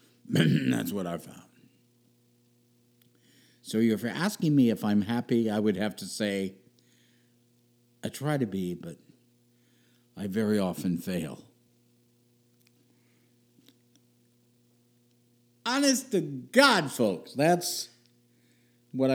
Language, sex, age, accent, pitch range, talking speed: English, male, 60-79, American, 110-120 Hz, 100 wpm